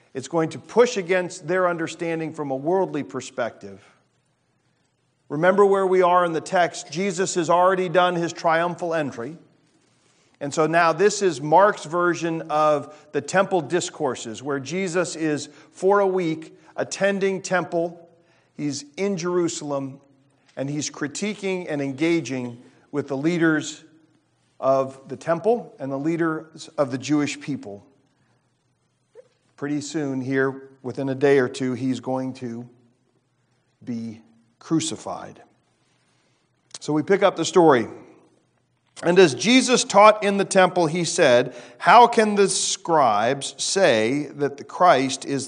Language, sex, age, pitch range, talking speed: English, male, 40-59, 135-180 Hz, 135 wpm